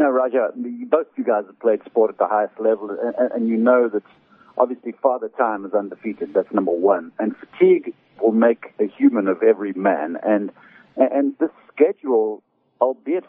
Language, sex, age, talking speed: English, male, 50-69, 180 wpm